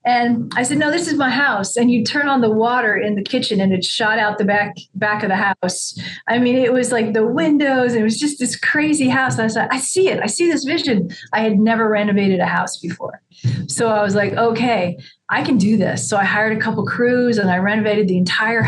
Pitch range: 190-235 Hz